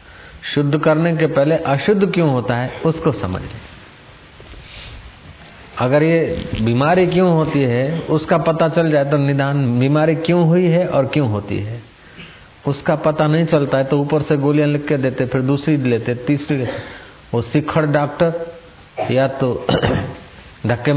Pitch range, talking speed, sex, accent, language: 110-145 Hz, 150 wpm, male, native, Hindi